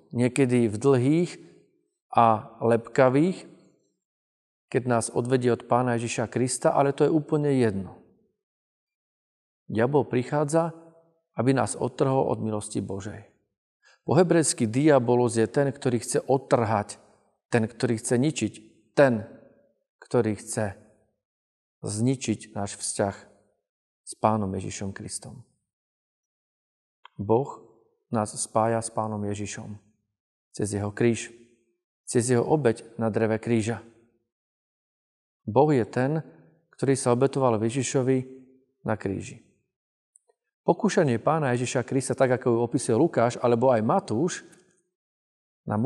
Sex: male